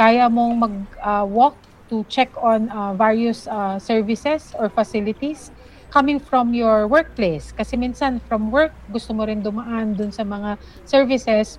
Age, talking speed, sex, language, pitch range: 40-59, 145 wpm, female, Filipino, 215-255 Hz